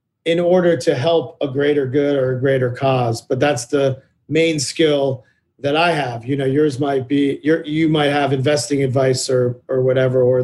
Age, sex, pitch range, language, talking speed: 40-59, male, 130-155 Hz, English, 190 wpm